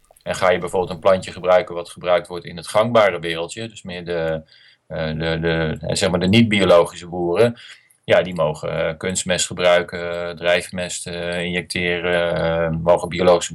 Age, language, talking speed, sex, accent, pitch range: 40-59, Dutch, 130 wpm, male, Dutch, 85-105 Hz